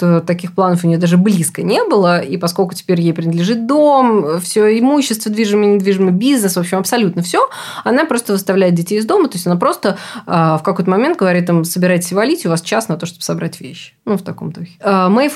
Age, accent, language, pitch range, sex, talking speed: 20-39, native, Russian, 170-210 Hz, female, 215 wpm